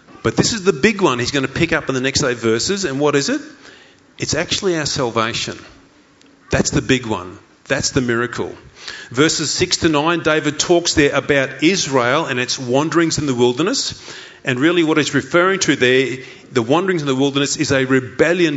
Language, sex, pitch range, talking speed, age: English, male, 130-165 Hz, 195 wpm, 30-49